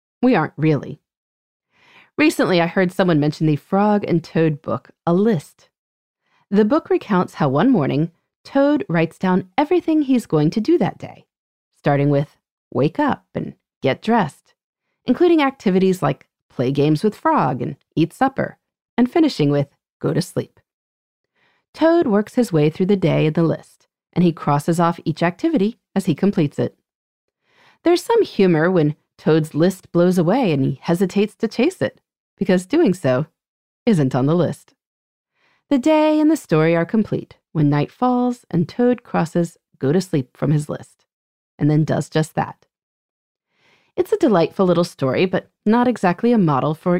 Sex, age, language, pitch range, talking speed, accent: female, 30-49, English, 155-245 Hz, 165 wpm, American